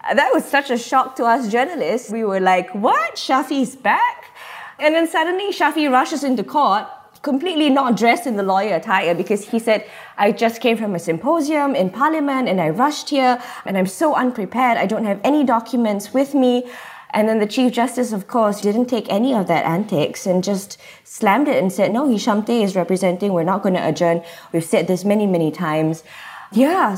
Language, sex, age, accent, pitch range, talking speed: English, female, 20-39, Malaysian, 210-270 Hz, 200 wpm